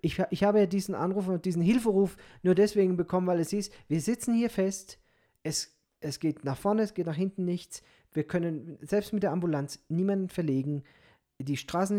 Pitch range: 140-185 Hz